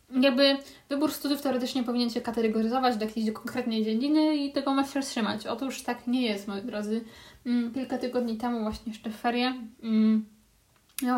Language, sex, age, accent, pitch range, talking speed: Polish, female, 20-39, native, 225-260 Hz, 170 wpm